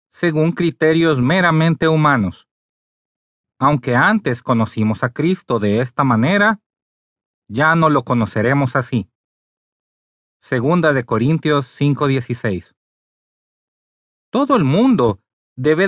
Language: Spanish